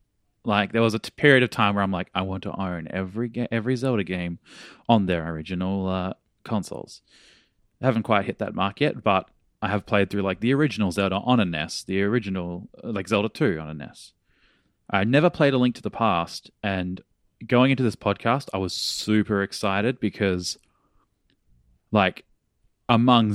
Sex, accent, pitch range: male, Australian, 95-110 Hz